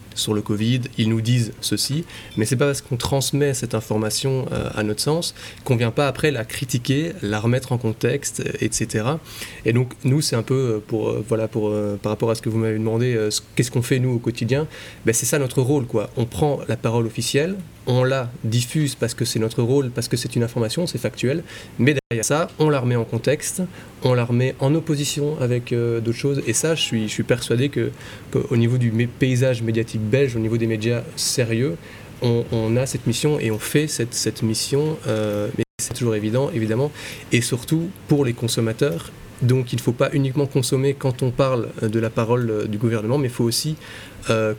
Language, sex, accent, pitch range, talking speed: French, male, French, 115-140 Hz, 215 wpm